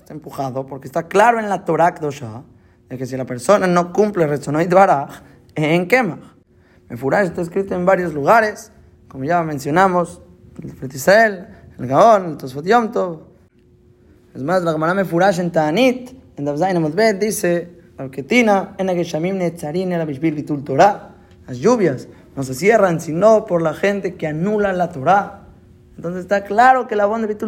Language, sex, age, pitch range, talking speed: Spanish, male, 20-39, 140-200 Hz, 150 wpm